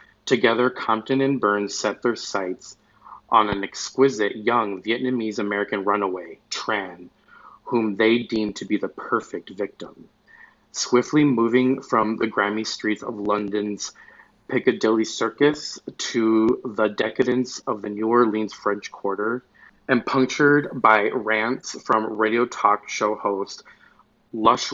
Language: English